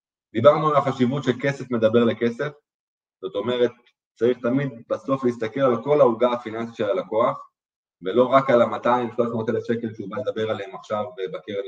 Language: Hebrew